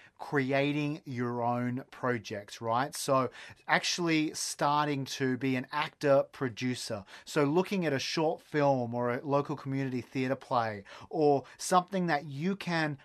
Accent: Australian